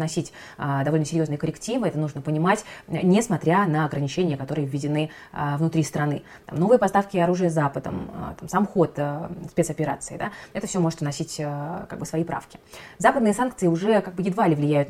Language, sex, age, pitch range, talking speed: Russian, female, 20-39, 155-195 Hz, 155 wpm